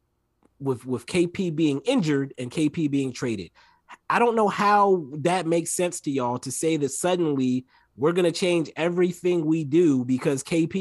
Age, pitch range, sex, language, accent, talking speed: 30-49, 130-170 Hz, male, English, American, 165 wpm